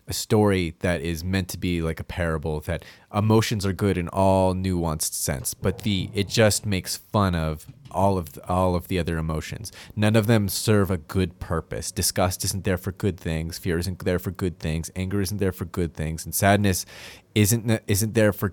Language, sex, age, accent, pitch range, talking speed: English, male, 30-49, American, 85-105 Hz, 205 wpm